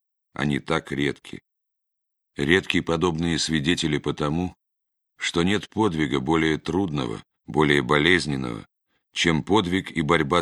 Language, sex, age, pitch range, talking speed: Russian, male, 40-59, 75-90 Hz, 105 wpm